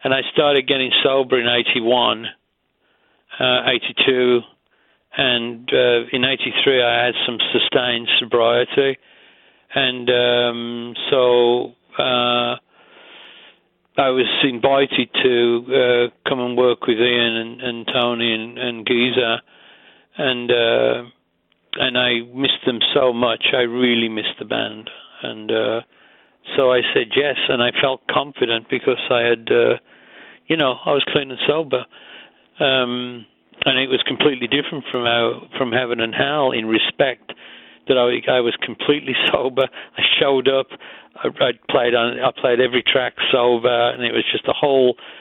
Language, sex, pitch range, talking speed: English, male, 120-130 Hz, 145 wpm